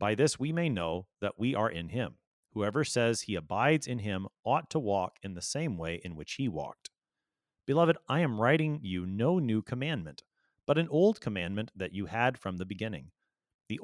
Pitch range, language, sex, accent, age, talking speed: 95-140 Hz, English, male, American, 30-49, 200 wpm